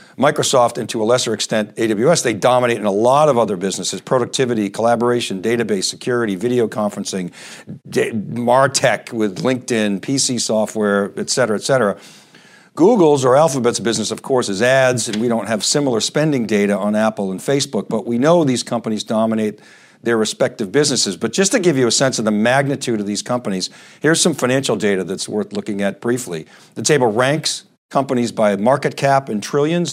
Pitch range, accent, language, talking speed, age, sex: 110-145 Hz, American, English, 180 wpm, 50-69, male